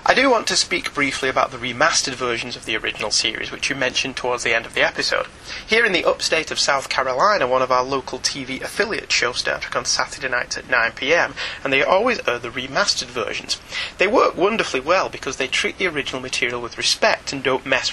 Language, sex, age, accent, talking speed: English, male, 30-49, British, 220 wpm